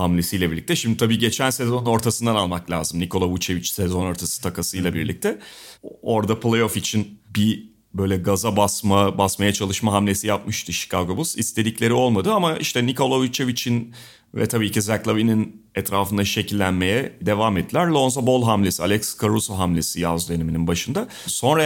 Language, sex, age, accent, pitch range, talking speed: Turkish, male, 30-49, native, 100-140 Hz, 145 wpm